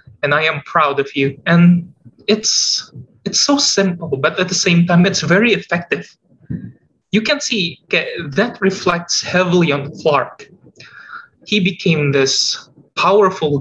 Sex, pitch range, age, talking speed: male, 160-210 Hz, 20-39, 140 wpm